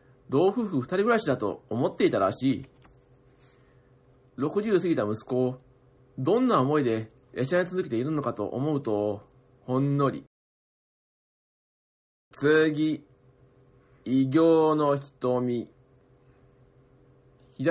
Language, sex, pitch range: Japanese, male, 125-145 Hz